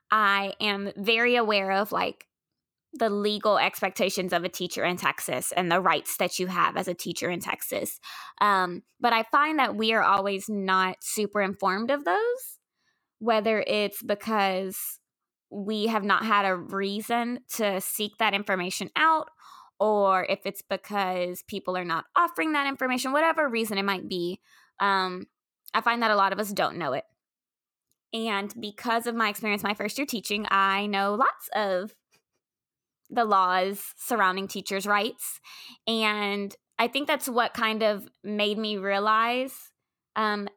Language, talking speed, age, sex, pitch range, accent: English, 160 wpm, 20-39, female, 195-235 Hz, American